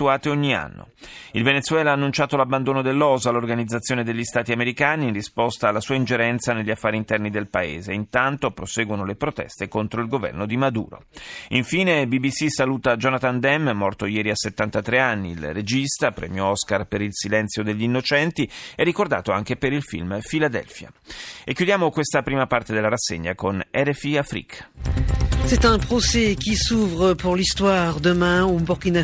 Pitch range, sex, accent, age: 115-155 Hz, male, native, 30-49